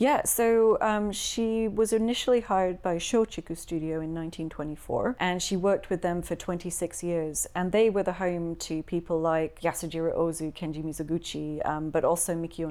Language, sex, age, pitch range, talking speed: English, female, 30-49, 165-185 Hz, 170 wpm